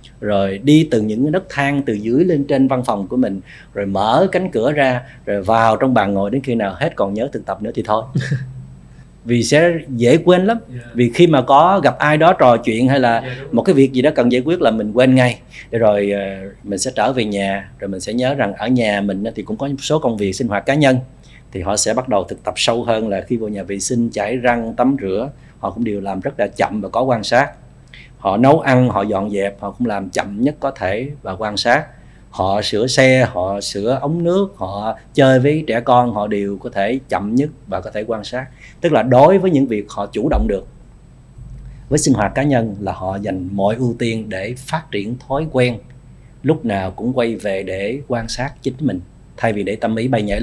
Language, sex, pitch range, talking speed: Vietnamese, male, 105-135 Hz, 240 wpm